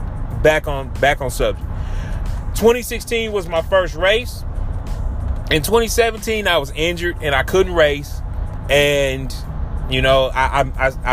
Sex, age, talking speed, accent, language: male, 30-49, 130 wpm, American, English